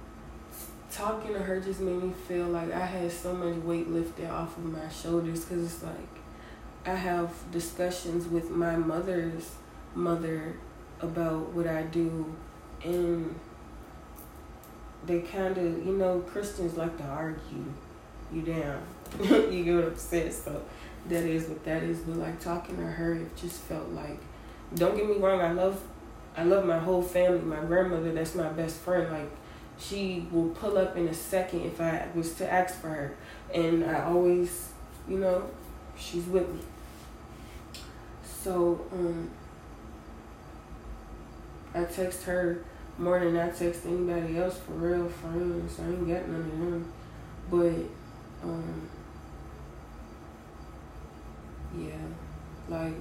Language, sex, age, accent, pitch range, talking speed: English, female, 20-39, American, 160-175 Hz, 145 wpm